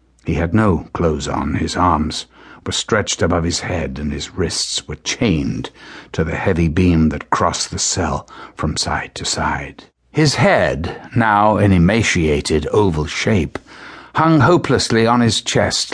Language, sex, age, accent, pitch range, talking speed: English, male, 60-79, British, 75-110 Hz, 155 wpm